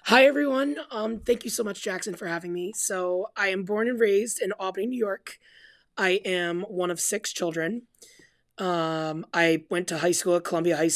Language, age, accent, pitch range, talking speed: English, 20-39, American, 165-195 Hz, 195 wpm